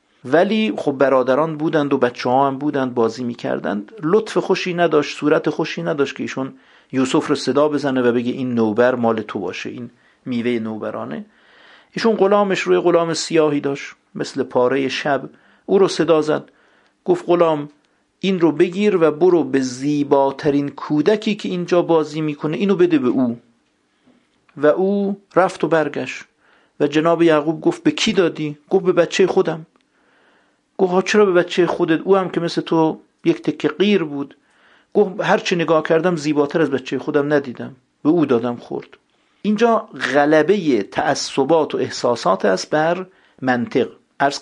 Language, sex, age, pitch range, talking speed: Persian, male, 50-69, 130-180 Hz, 155 wpm